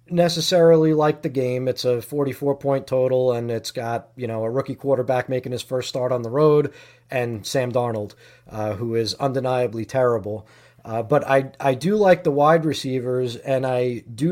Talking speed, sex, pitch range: 180 wpm, male, 125-150 Hz